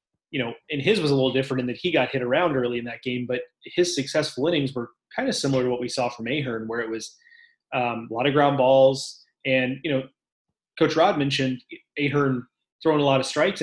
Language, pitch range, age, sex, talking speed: English, 130-155 Hz, 30-49, male, 235 wpm